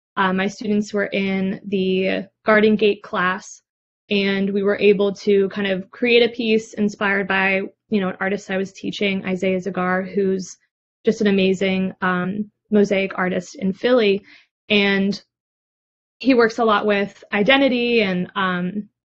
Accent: American